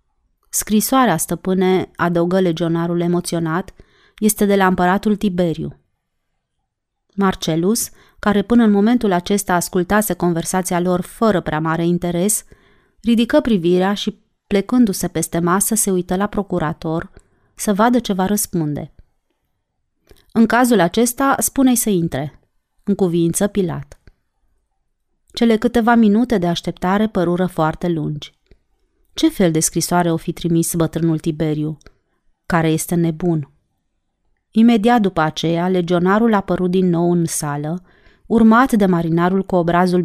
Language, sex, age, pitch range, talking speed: Romanian, female, 30-49, 170-210 Hz, 125 wpm